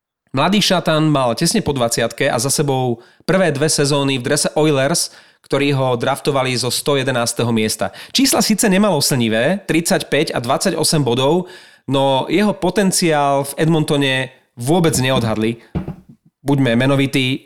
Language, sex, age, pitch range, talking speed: Slovak, male, 30-49, 130-165 Hz, 135 wpm